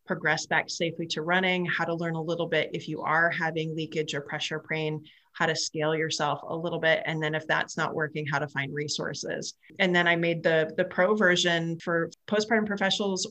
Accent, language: American, English